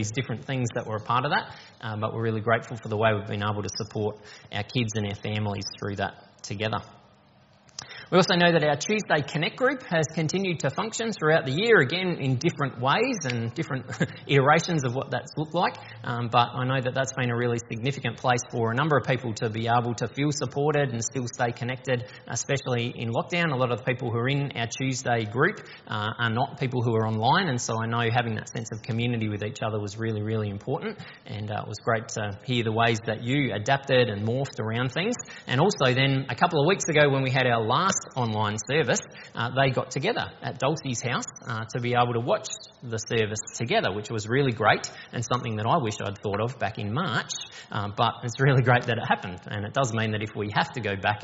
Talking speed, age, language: 235 wpm, 20-39, English